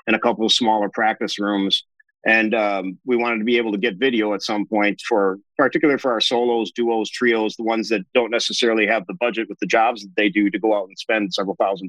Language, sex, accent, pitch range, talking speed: English, male, American, 105-135 Hz, 240 wpm